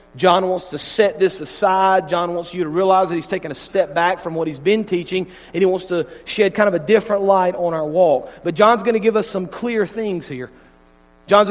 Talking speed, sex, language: 240 wpm, male, English